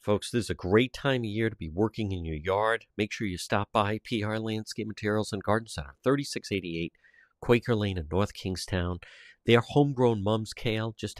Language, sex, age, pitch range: English, male, 50-69, 90-120 Hz